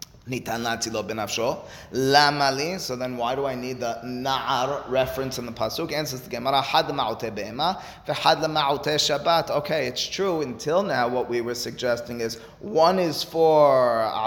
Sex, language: male, English